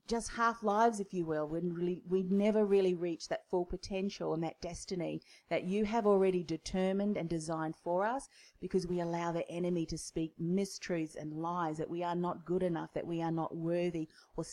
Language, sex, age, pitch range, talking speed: English, female, 40-59, 160-190 Hz, 200 wpm